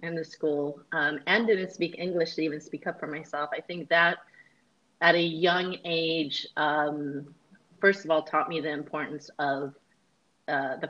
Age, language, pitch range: 30-49, English, 165-210 Hz